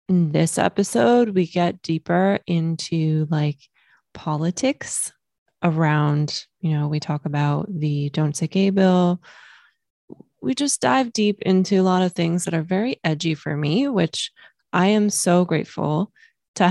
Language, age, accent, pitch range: English, 20-39, American, 155-190 Hz